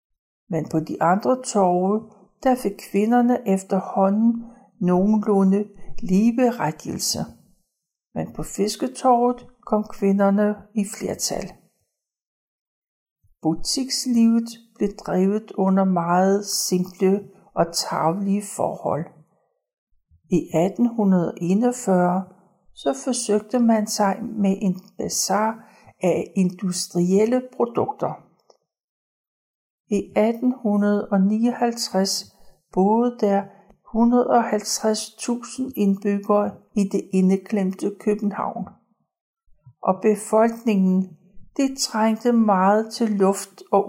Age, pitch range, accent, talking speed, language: 60-79, 190-225 Hz, native, 80 wpm, Danish